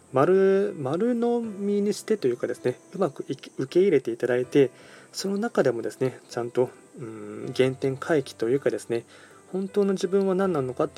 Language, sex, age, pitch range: Japanese, male, 20-39, 120-165 Hz